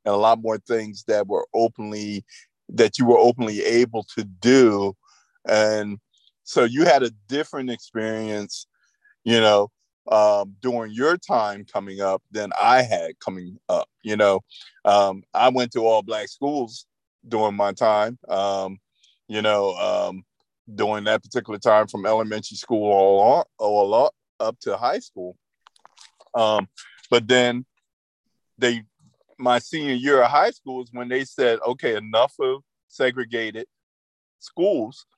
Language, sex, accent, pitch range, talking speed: English, male, American, 105-125 Hz, 145 wpm